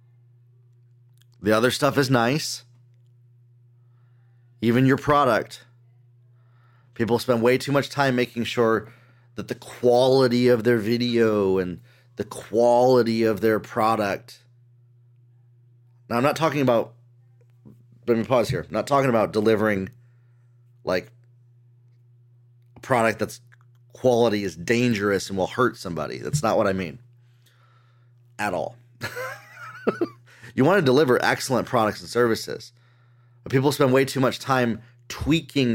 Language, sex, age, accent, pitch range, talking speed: English, male, 30-49, American, 120-125 Hz, 130 wpm